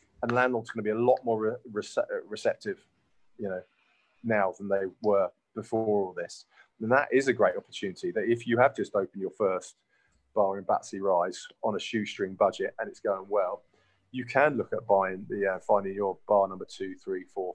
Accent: British